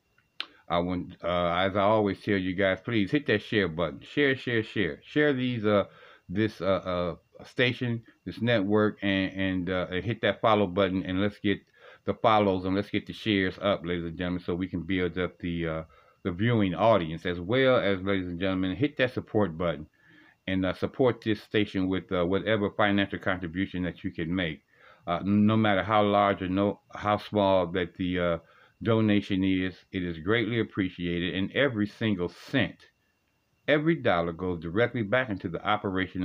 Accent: American